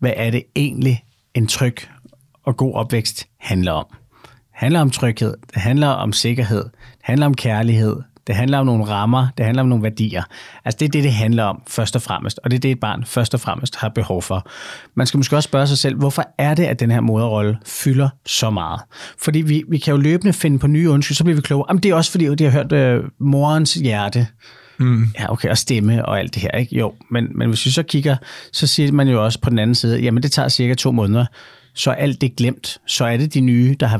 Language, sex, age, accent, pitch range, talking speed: Danish, male, 30-49, native, 115-140 Hz, 250 wpm